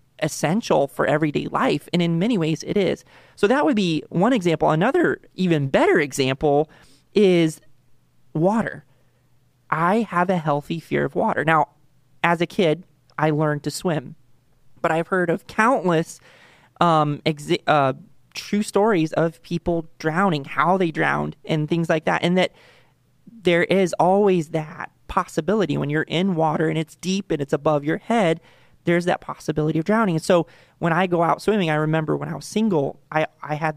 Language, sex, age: English, male, 30-49